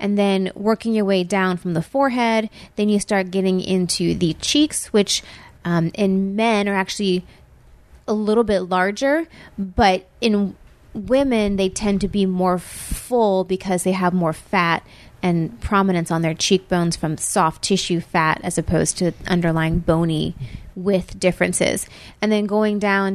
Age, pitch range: 30-49, 170-200 Hz